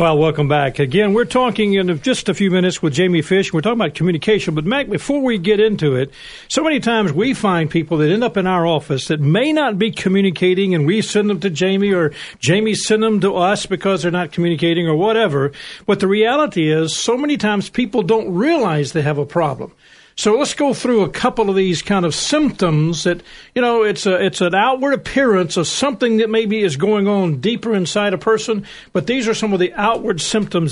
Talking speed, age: 220 wpm, 50-69